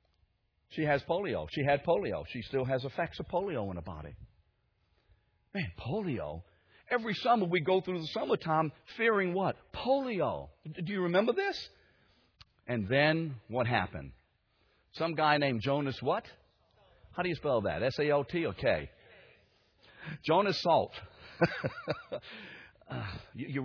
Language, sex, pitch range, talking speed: English, male, 110-165 Hz, 130 wpm